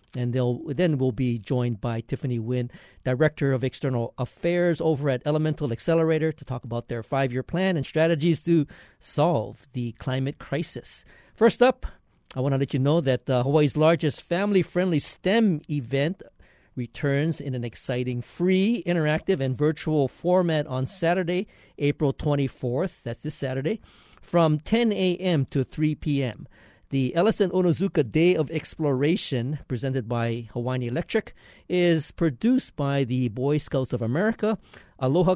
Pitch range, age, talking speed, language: 130-170 Hz, 50-69, 145 wpm, English